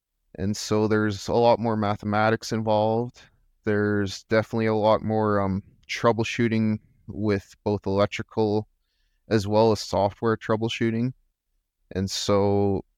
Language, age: English, 20-39